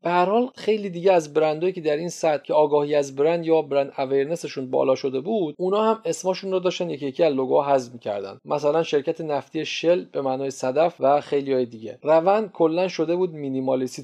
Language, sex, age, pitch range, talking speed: Persian, male, 40-59, 140-190 Hz, 190 wpm